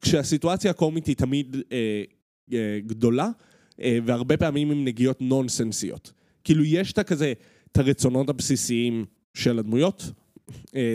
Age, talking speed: 20-39, 125 wpm